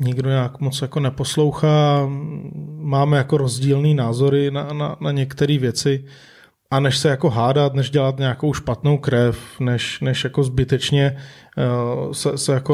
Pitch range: 130-150 Hz